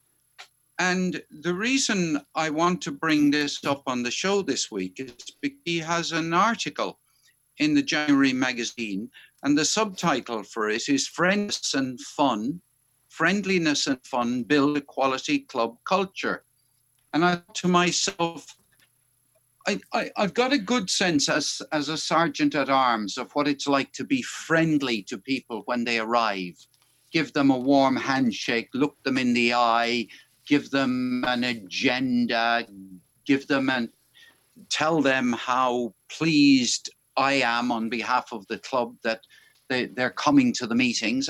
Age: 60-79